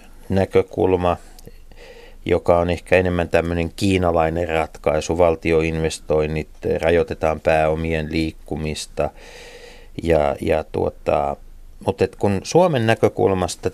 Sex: male